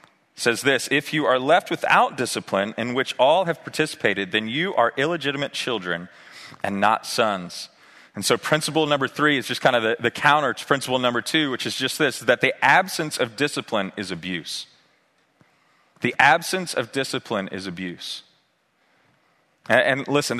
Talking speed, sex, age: 170 wpm, male, 30-49